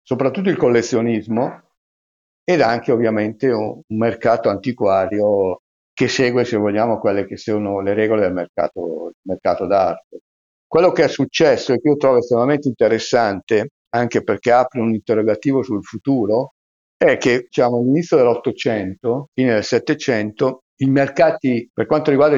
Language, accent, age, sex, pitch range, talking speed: Italian, native, 50-69, male, 110-140 Hz, 140 wpm